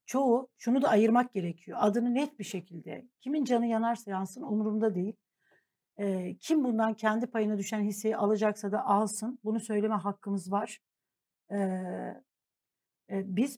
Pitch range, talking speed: 205-250 Hz, 130 wpm